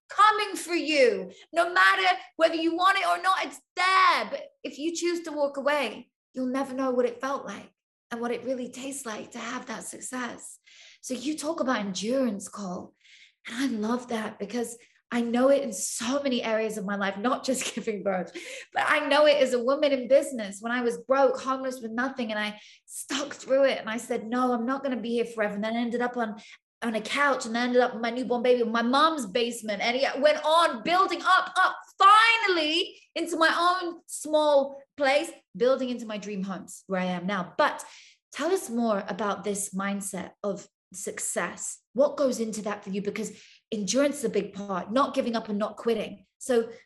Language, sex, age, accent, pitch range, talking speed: English, female, 20-39, British, 220-295 Hz, 210 wpm